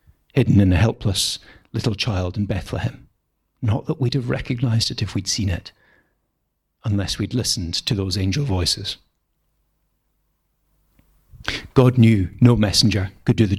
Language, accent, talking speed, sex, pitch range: English, British, 140 wpm, male, 95-120 Hz